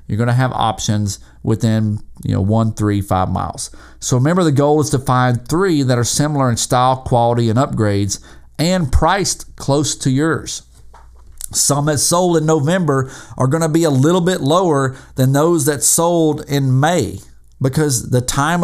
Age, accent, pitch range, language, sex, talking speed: 40-59, American, 115-150 Hz, English, male, 175 wpm